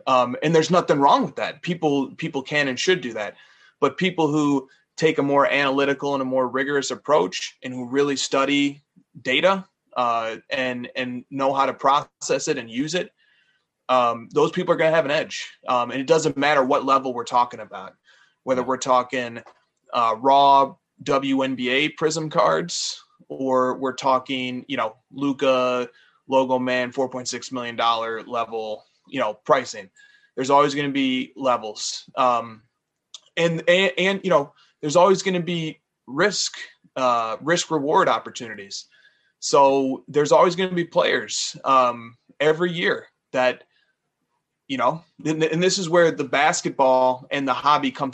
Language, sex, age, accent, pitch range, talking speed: English, male, 20-39, American, 125-160 Hz, 165 wpm